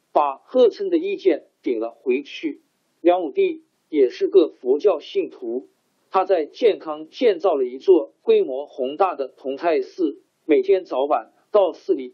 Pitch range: 325-395 Hz